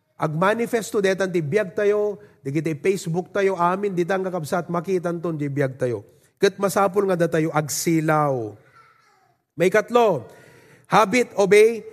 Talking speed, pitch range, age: 120 wpm, 175-250 Hz, 30-49